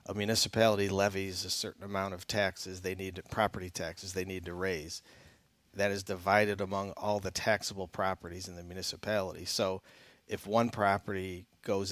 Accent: American